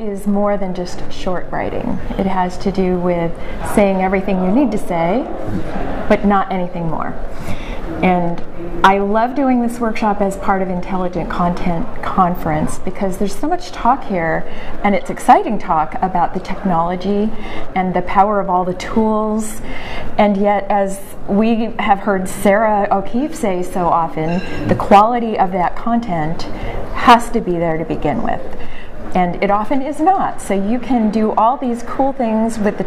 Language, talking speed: English, 165 wpm